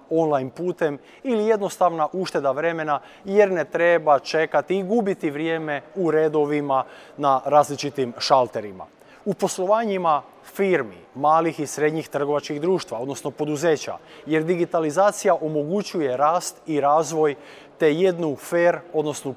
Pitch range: 140-180 Hz